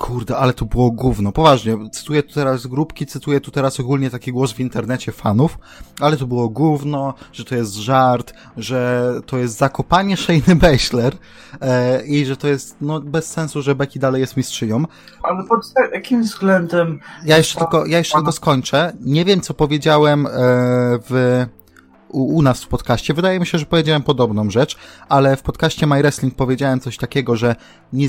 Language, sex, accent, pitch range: Polish, male, native, 120-150 Hz